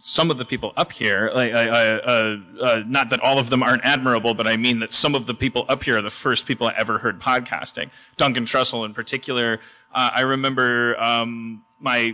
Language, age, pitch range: English, 30-49, 120-150 Hz